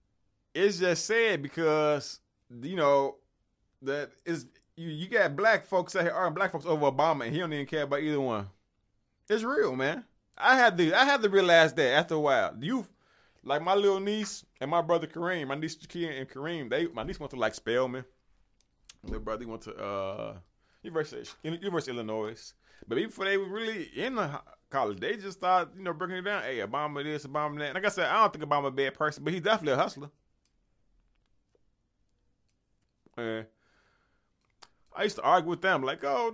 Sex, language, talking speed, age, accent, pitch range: male, English, 200 wpm, 20-39, American, 130-205 Hz